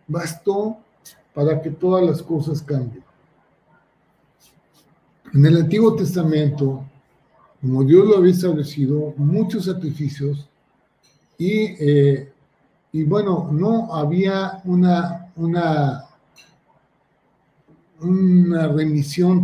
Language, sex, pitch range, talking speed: Spanish, male, 145-185 Hz, 85 wpm